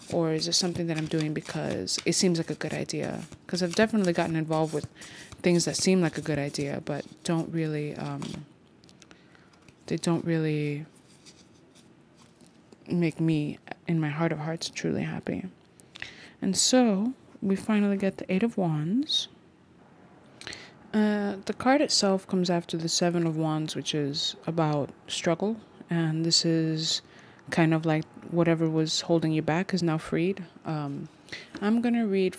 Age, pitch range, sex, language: 20-39, 155-180 Hz, female, English